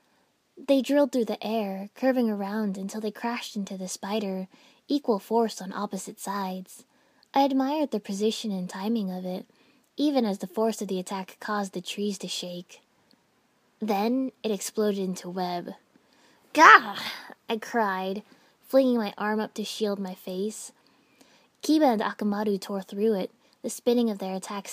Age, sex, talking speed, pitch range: 10-29, female, 160 wpm, 195-235 Hz